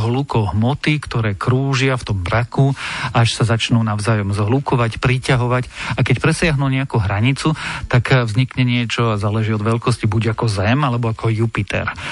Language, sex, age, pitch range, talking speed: Slovak, male, 40-59, 115-135 Hz, 155 wpm